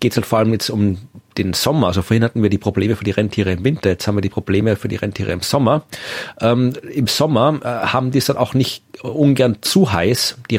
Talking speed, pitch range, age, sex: 245 wpm, 105-130 Hz, 40-59, male